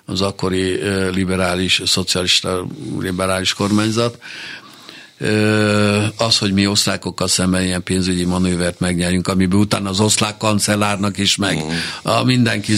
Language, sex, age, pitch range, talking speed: Hungarian, male, 60-79, 95-110 Hz, 110 wpm